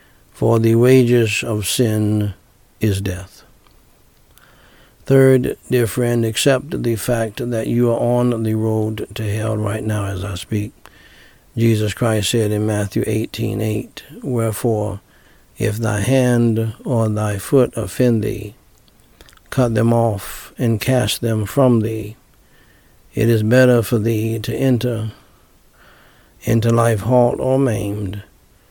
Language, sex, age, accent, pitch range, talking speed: English, male, 60-79, American, 105-120 Hz, 130 wpm